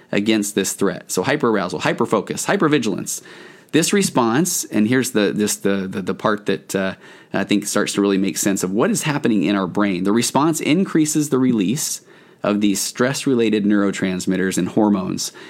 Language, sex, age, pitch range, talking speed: English, male, 20-39, 95-130 Hz, 170 wpm